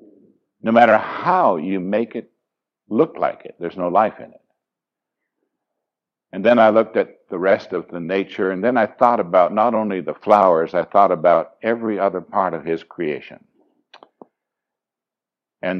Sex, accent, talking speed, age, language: male, American, 165 wpm, 60-79, English